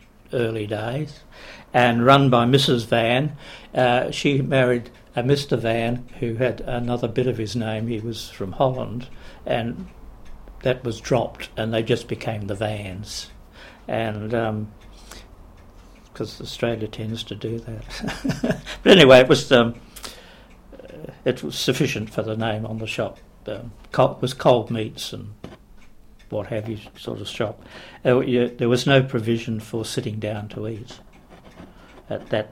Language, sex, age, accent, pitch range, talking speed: English, male, 60-79, British, 110-125 Hz, 145 wpm